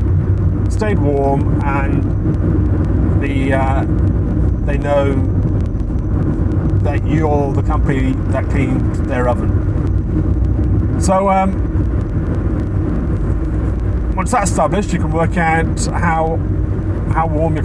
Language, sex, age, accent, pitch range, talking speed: English, male, 30-49, British, 95-110 Hz, 95 wpm